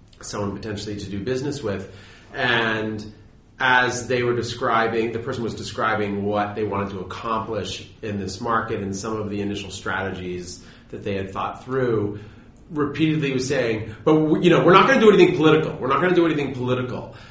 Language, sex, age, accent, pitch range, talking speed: English, male, 30-49, American, 100-125 Hz, 185 wpm